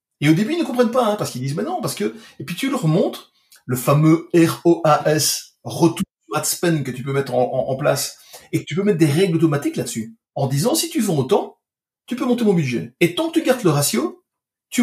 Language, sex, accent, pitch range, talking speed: French, male, French, 125-175 Hz, 245 wpm